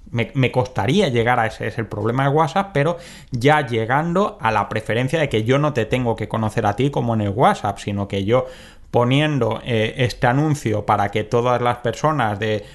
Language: Spanish